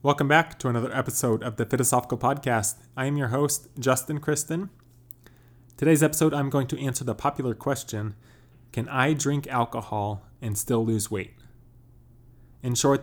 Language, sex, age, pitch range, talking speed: English, male, 20-39, 115-125 Hz, 155 wpm